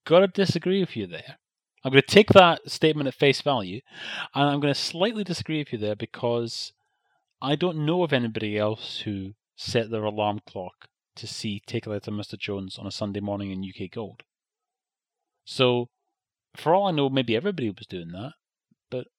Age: 30-49